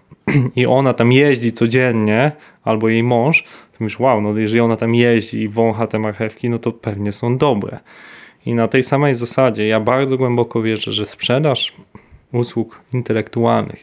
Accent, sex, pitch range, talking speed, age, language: native, male, 110-125 Hz, 165 wpm, 20-39, Polish